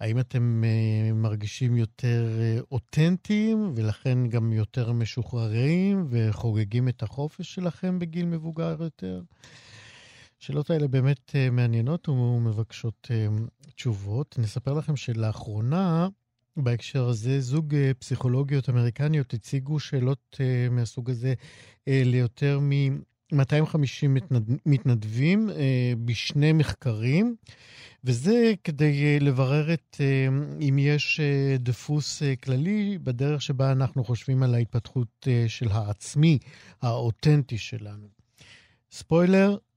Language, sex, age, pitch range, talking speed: Hebrew, male, 50-69, 120-145 Hz, 105 wpm